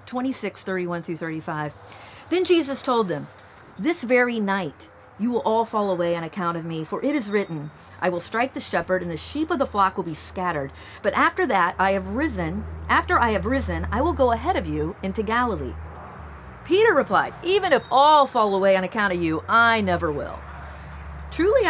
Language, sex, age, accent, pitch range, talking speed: English, female, 40-59, American, 170-245 Hz, 190 wpm